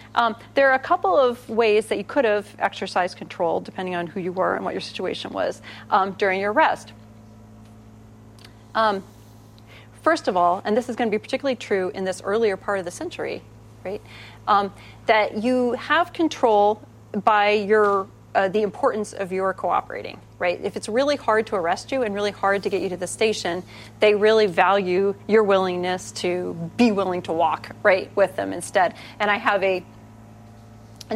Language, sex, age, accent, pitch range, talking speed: English, female, 30-49, American, 190-255 Hz, 185 wpm